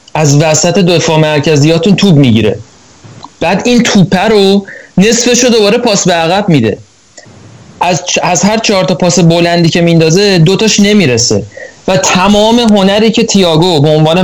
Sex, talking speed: male, 150 wpm